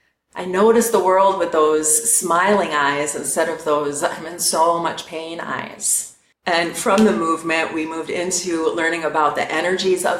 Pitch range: 150-180 Hz